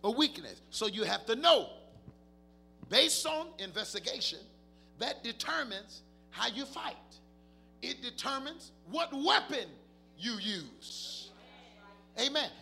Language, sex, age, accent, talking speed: English, male, 50-69, American, 105 wpm